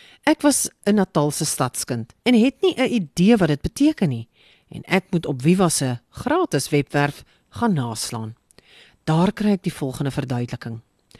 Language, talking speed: English, 160 wpm